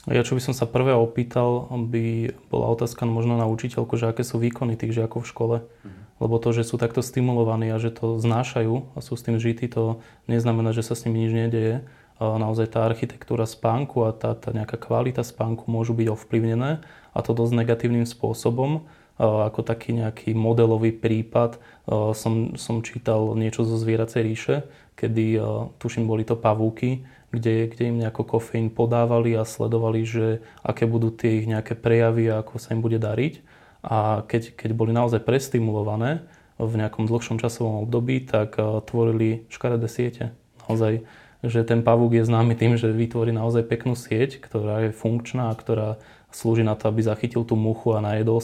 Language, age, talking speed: Slovak, 20-39, 175 wpm